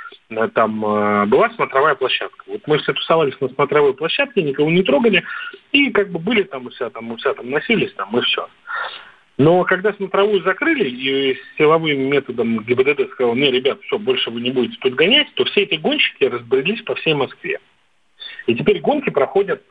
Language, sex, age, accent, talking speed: Russian, male, 40-59, native, 175 wpm